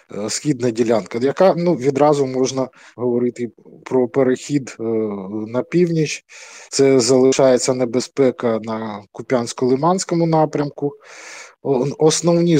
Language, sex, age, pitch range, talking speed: Ukrainian, male, 20-39, 120-150 Hz, 85 wpm